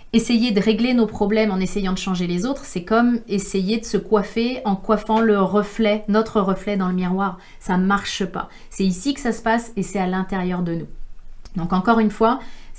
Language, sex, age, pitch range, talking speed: French, female, 30-49, 190-225 Hz, 220 wpm